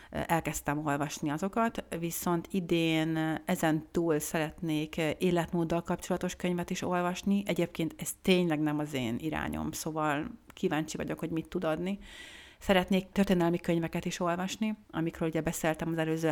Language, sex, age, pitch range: Hungarian, female, 30-49, 160-185 Hz